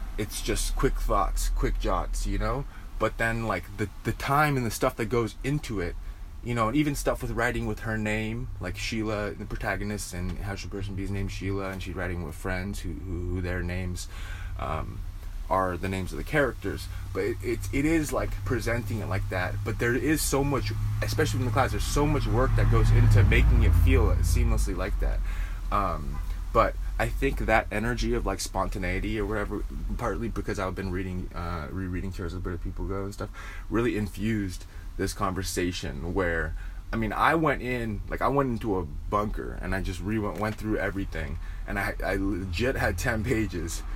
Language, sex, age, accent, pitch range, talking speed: English, male, 20-39, American, 90-110 Hz, 200 wpm